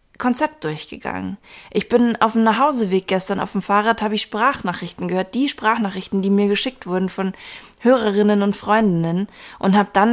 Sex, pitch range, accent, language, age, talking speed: female, 195-225 Hz, German, German, 20-39, 165 wpm